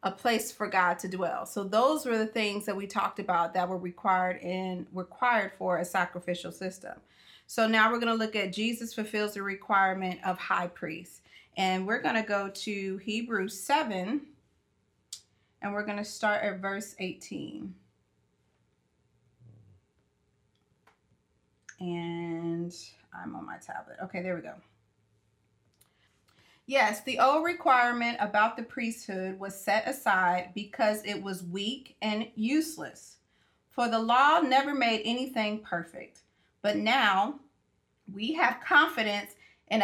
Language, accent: English, American